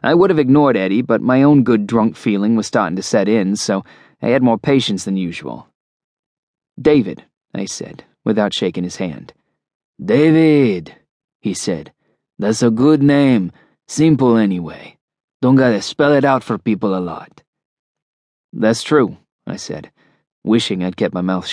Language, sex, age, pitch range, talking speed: English, male, 20-39, 110-135 Hz, 160 wpm